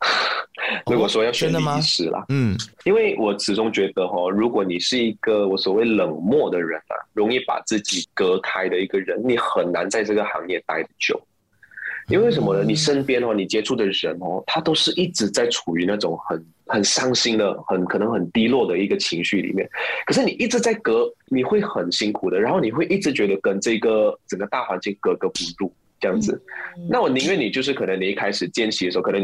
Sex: male